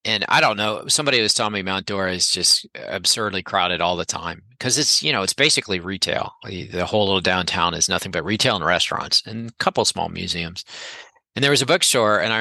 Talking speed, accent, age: 225 wpm, American, 40-59